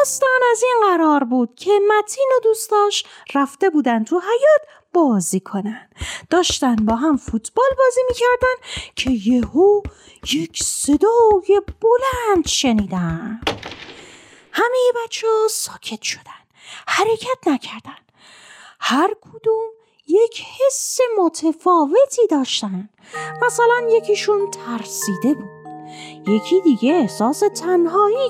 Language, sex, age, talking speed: Persian, female, 30-49, 105 wpm